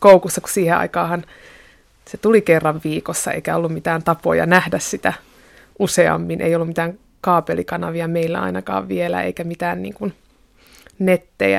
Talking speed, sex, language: 135 wpm, female, Finnish